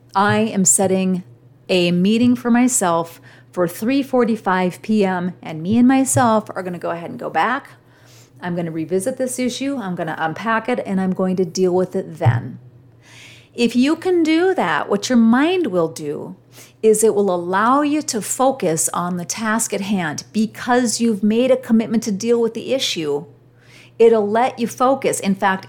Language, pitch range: English, 165-225 Hz